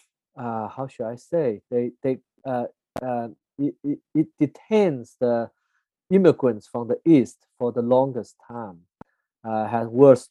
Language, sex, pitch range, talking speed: English, male, 120-150 Hz, 140 wpm